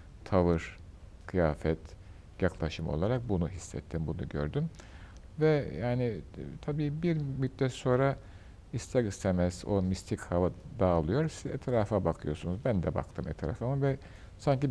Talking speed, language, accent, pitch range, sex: 120 wpm, Turkish, native, 80-110 Hz, male